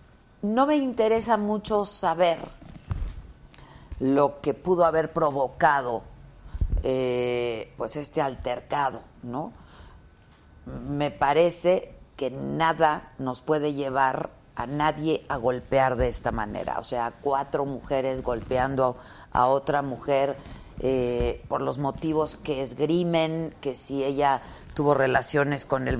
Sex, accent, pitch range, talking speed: female, Mexican, 130-160 Hz, 115 wpm